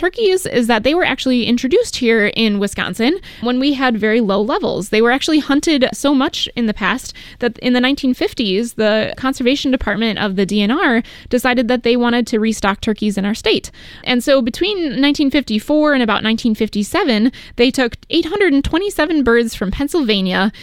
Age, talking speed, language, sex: 10-29, 170 wpm, English, female